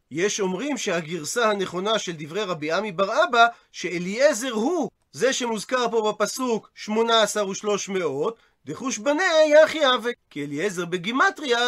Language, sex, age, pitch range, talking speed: Hebrew, male, 30-49, 195-260 Hz, 140 wpm